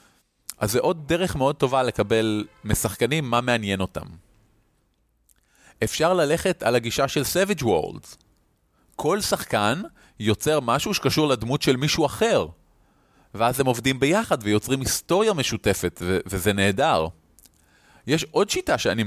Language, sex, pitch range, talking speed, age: Hebrew, male, 105-140 Hz, 130 wpm, 30-49